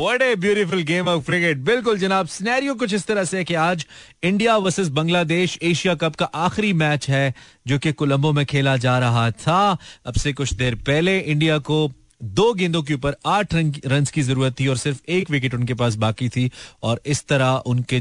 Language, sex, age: Hindi, male, 30-49